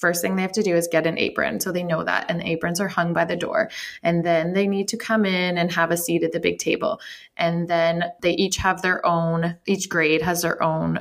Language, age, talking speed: English, 20-39, 265 wpm